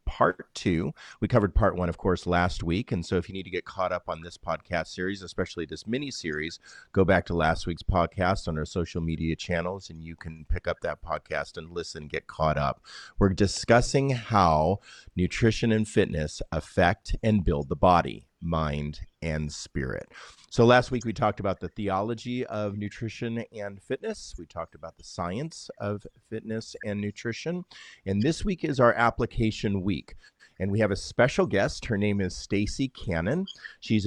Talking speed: 185 wpm